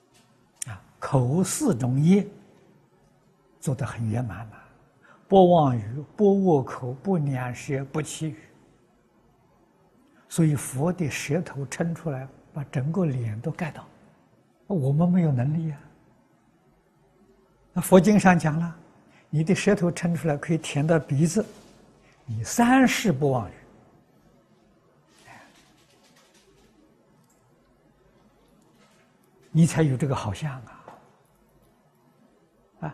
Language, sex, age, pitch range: Chinese, male, 60-79, 135-180 Hz